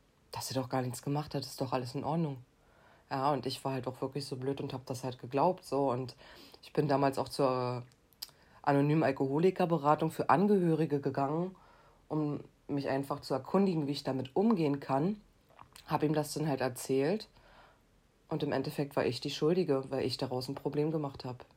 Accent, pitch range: German, 135-155 Hz